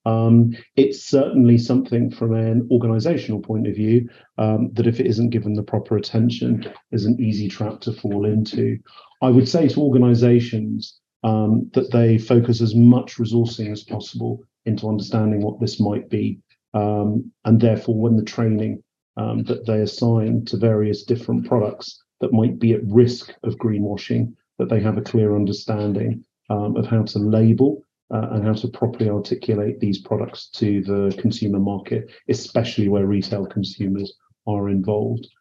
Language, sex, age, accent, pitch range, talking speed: English, male, 40-59, British, 105-120 Hz, 165 wpm